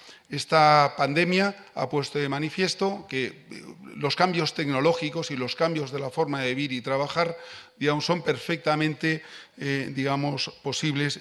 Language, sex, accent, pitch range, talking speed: Spanish, male, Spanish, 135-160 Hz, 140 wpm